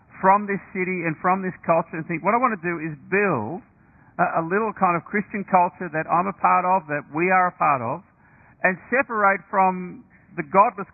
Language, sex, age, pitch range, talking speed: English, male, 50-69, 145-195 Hz, 210 wpm